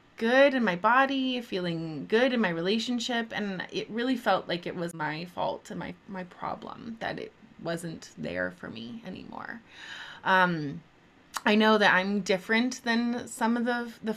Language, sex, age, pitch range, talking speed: English, female, 20-39, 175-215 Hz, 170 wpm